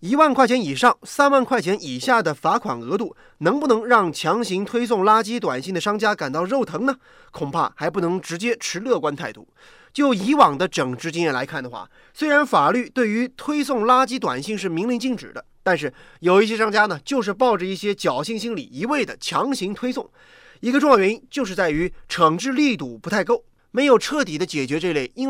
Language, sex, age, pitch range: Chinese, male, 30-49, 180-265 Hz